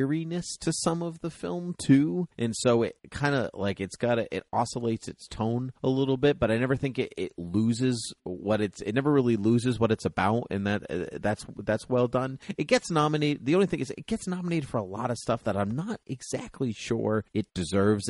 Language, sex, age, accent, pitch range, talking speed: English, male, 30-49, American, 90-130 Hz, 220 wpm